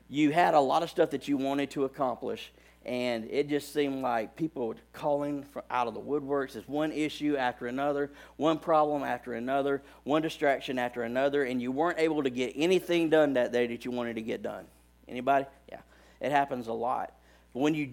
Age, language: 50-69, English